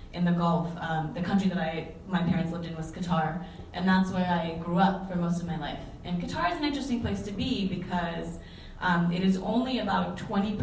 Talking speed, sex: 220 wpm, female